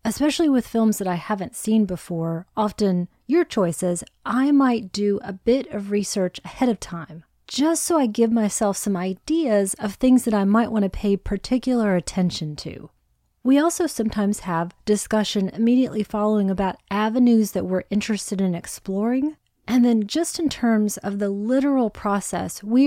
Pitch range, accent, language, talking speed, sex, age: 185-235 Hz, American, English, 165 wpm, female, 30-49